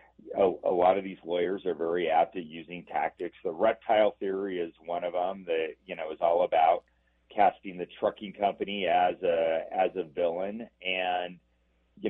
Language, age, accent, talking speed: English, 40-59, American, 180 wpm